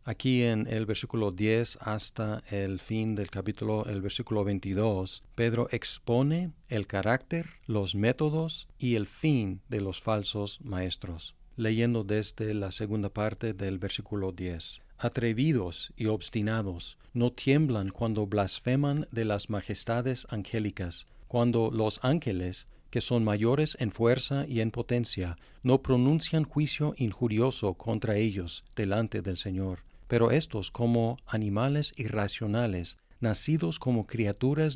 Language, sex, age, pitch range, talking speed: Spanish, male, 40-59, 105-125 Hz, 125 wpm